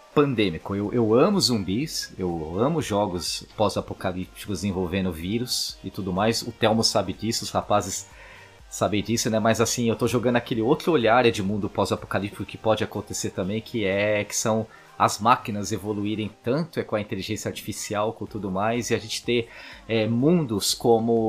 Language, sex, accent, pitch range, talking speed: Portuguese, male, Brazilian, 100-120 Hz, 165 wpm